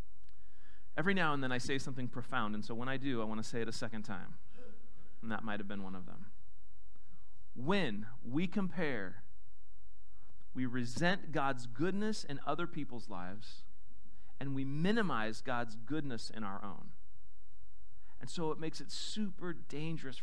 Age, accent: 30-49, American